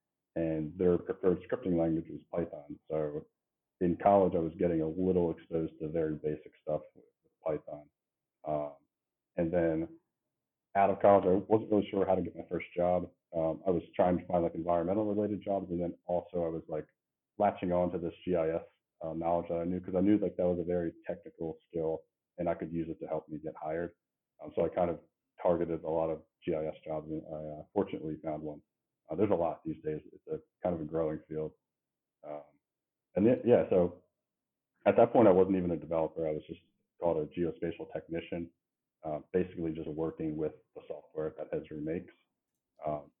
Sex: male